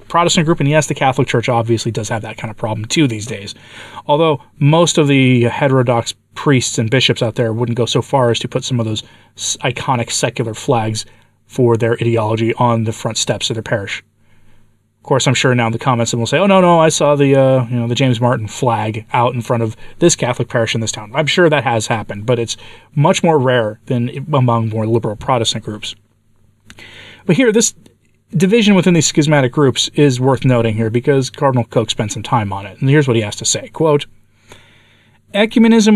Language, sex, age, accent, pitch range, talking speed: English, male, 30-49, American, 115-145 Hz, 210 wpm